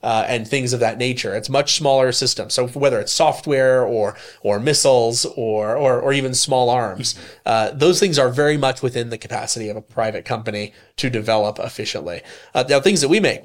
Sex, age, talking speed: male, 30-49, 200 wpm